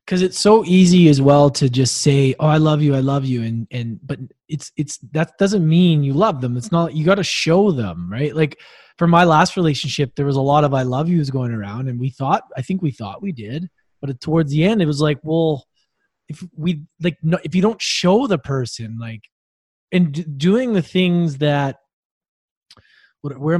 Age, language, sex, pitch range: 20-39, English, male, 140-190 Hz